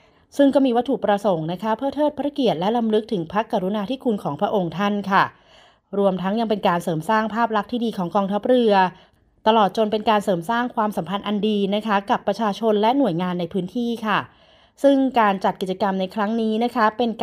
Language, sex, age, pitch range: Thai, female, 30-49, 190-230 Hz